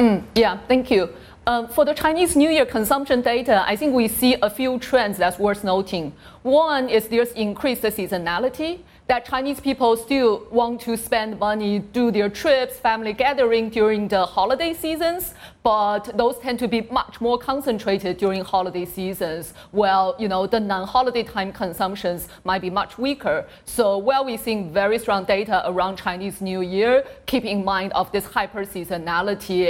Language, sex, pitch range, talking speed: English, female, 195-245 Hz, 170 wpm